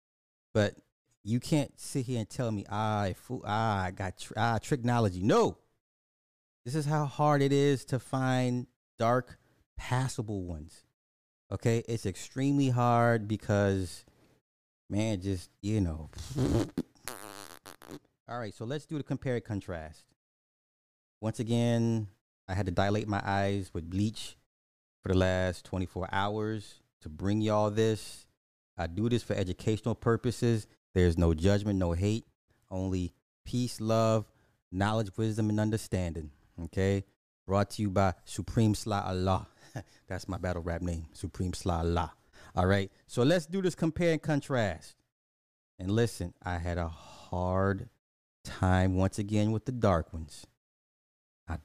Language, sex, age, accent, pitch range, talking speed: English, male, 30-49, American, 90-115 Hz, 145 wpm